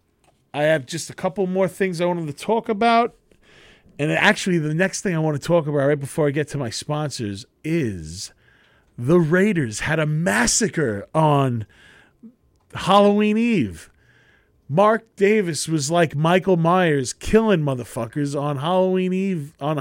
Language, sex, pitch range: English, male, 120-185 Hz